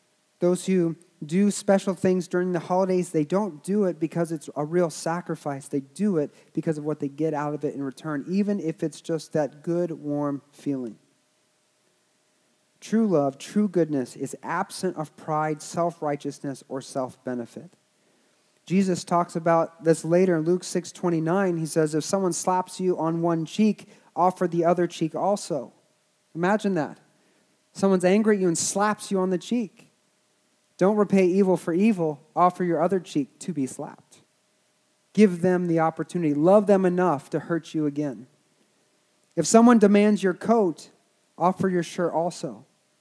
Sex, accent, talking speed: male, American, 165 wpm